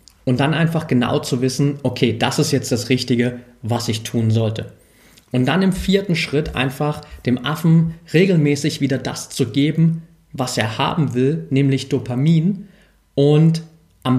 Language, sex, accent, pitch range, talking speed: German, male, German, 125-165 Hz, 155 wpm